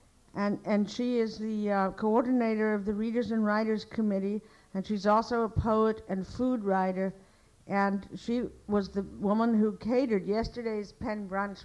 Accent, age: American, 60-79